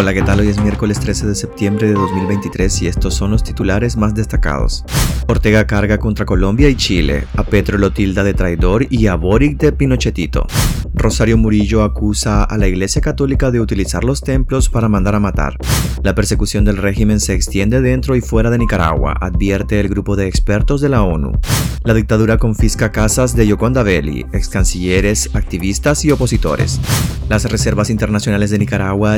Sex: male